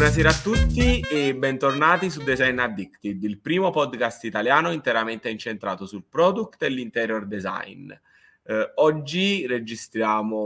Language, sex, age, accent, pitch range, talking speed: Italian, male, 20-39, native, 110-145 Hz, 125 wpm